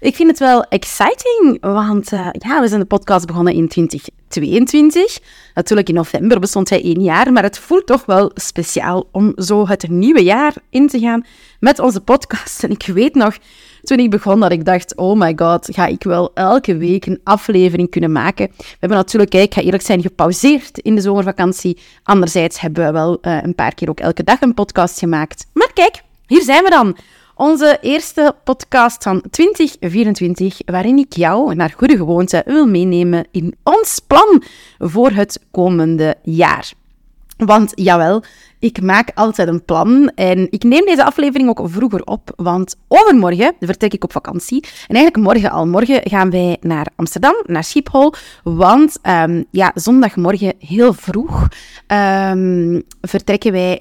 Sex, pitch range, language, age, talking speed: female, 175-255 Hz, Dutch, 30-49, 170 wpm